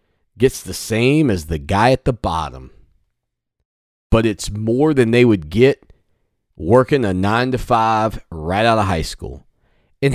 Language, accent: English, American